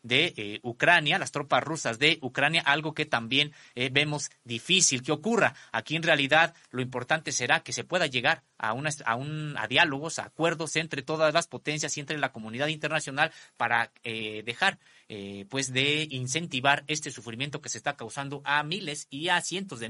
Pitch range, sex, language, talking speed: 120-160 Hz, male, Spanish, 185 wpm